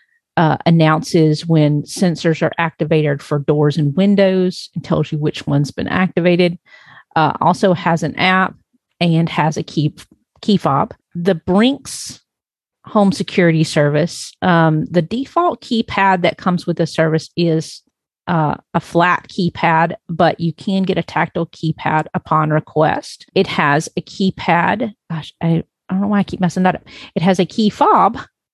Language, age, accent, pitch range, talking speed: English, 40-59, American, 160-190 Hz, 160 wpm